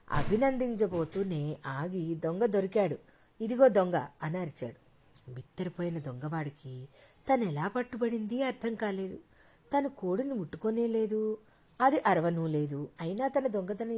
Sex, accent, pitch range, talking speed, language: female, native, 160-225 Hz, 100 wpm, Telugu